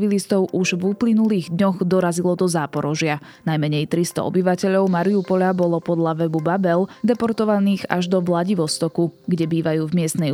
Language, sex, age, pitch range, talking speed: Slovak, female, 20-39, 165-195 Hz, 135 wpm